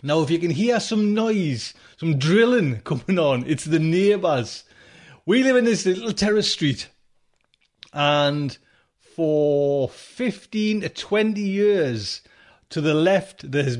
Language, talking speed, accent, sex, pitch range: English, 140 wpm, British, male, 135-195 Hz